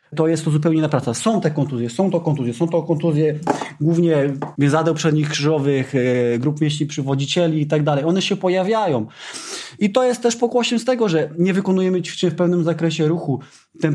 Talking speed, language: 185 wpm, Polish